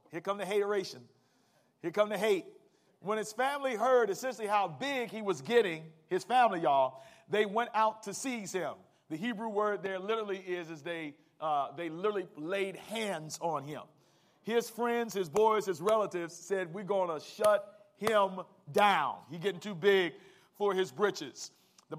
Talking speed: 170 wpm